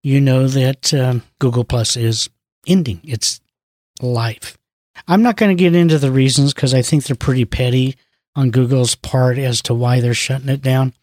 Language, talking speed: English, 185 wpm